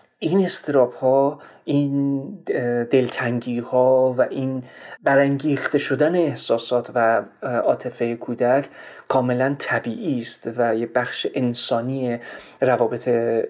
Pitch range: 120-135 Hz